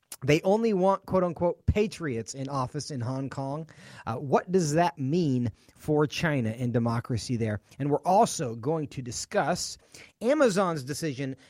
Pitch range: 125-175 Hz